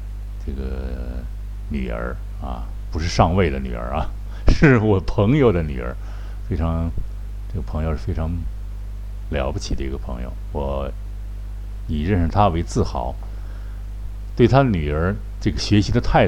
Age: 60-79